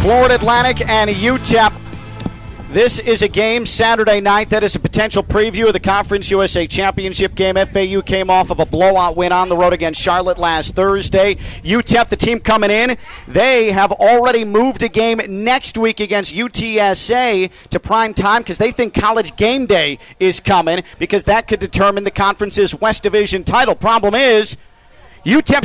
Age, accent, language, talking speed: 40-59, American, English, 170 wpm